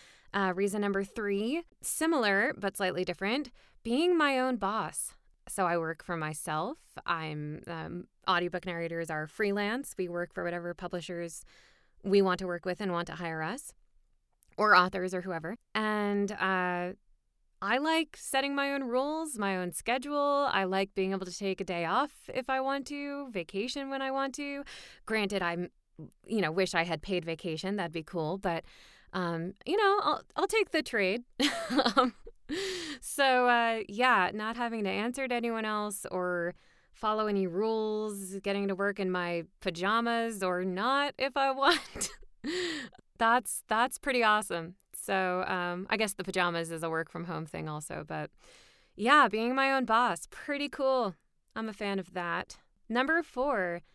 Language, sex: English, female